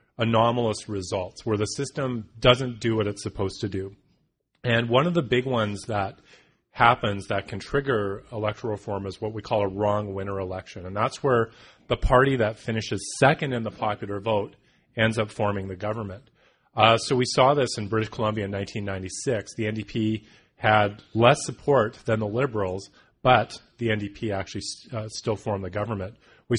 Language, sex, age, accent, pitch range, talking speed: English, male, 30-49, American, 100-120 Hz, 175 wpm